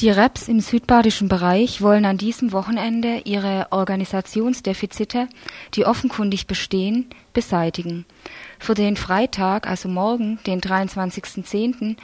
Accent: German